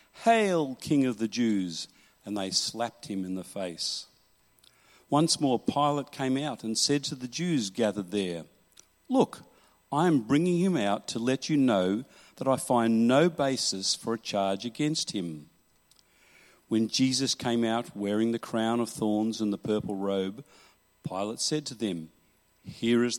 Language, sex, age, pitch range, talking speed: English, male, 50-69, 105-145 Hz, 165 wpm